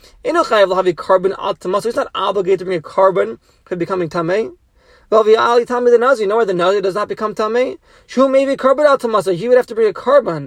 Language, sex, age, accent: English, male, 30-49, American